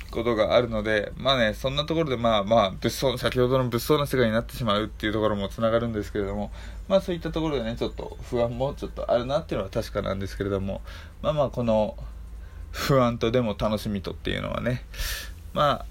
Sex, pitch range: male, 85-120 Hz